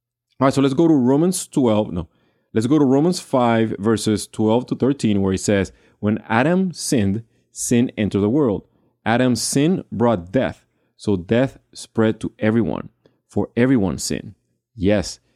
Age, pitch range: 30-49, 100-130 Hz